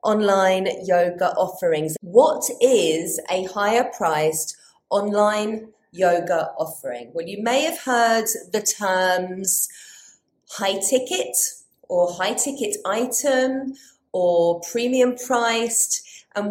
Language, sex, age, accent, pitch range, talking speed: English, female, 40-59, British, 190-255 Hz, 100 wpm